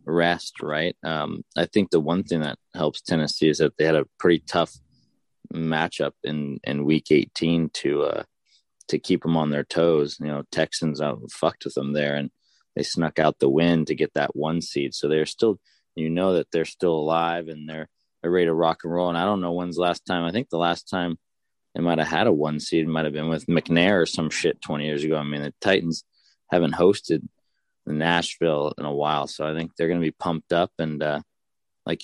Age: 20-39